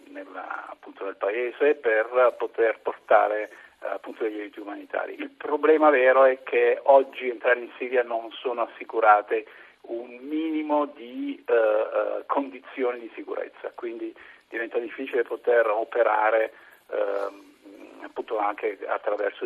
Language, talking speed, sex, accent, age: Italian, 120 wpm, male, native, 50-69